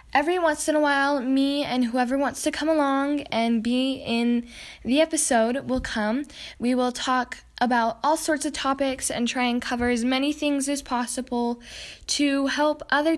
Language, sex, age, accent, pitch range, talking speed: English, female, 10-29, American, 235-280 Hz, 180 wpm